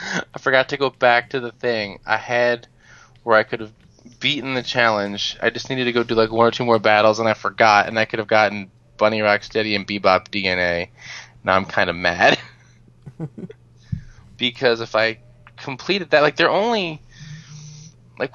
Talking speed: 185 wpm